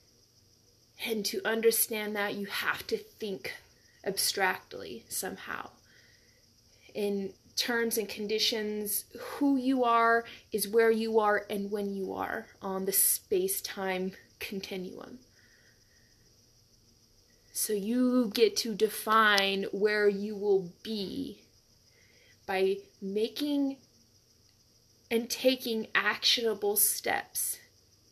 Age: 20-39